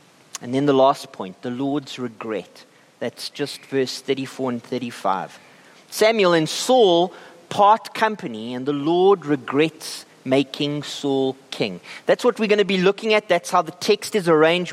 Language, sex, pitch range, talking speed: English, male, 150-210 Hz, 160 wpm